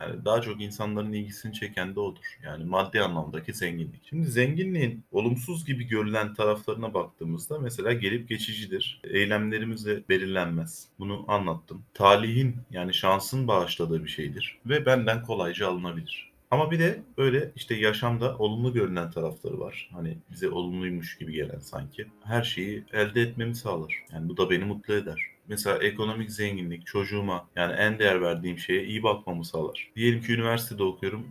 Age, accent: 30-49, native